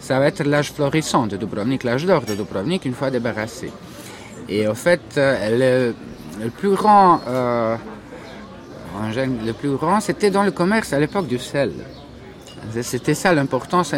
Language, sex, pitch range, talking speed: French, male, 125-170 Hz, 150 wpm